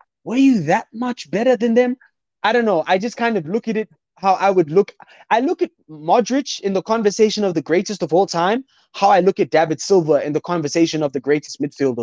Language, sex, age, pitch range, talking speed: English, male, 20-39, 165-230 Hz, 235 wpm